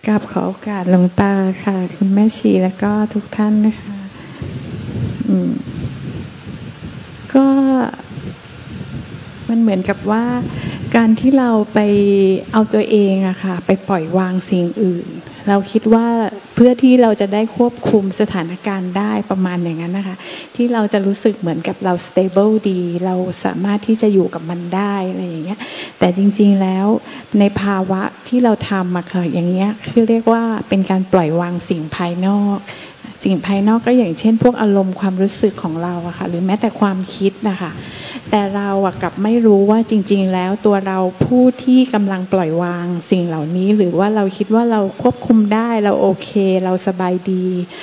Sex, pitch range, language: female, 185-215 Hz, Thai